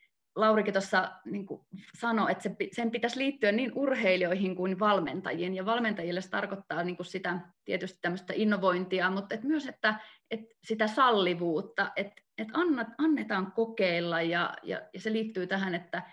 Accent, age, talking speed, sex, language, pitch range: native, 30-49, 150 wpm, female, Finnish, 180-220 Hz